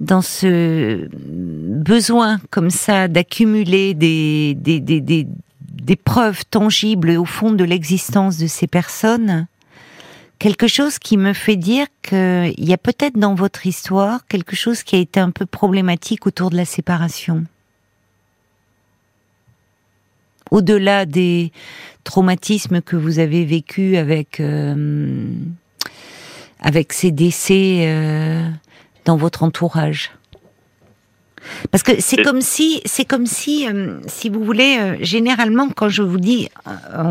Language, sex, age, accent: French, female, 50-69, French